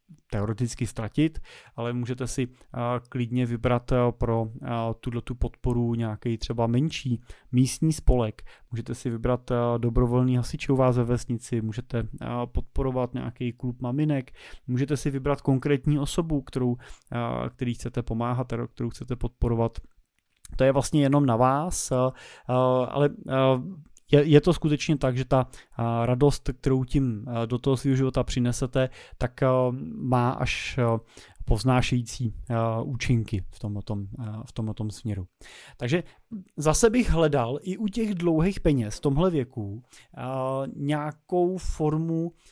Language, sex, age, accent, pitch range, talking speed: Czech, male, 20-39, native, 120-150 Hz, 125 wpm